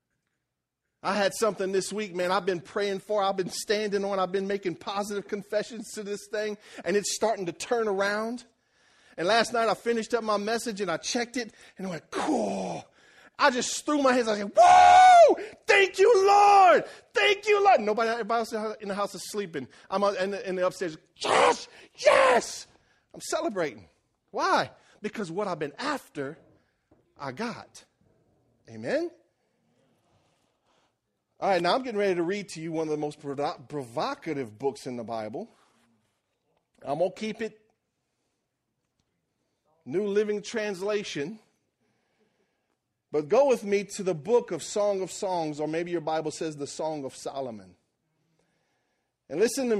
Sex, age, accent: male, 40-59, American